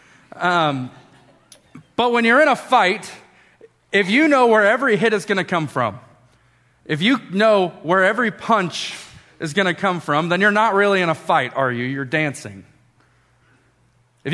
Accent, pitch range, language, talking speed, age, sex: American, 155-200 Hz, English, 170 wpm, 30-49, male